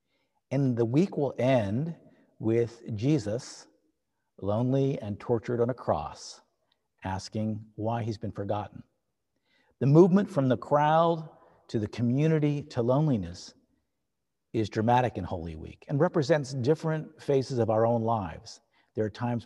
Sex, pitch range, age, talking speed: male, 110-135 Hz, 50-69, 135 wpm